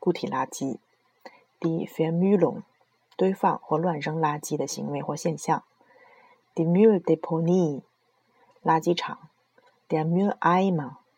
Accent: native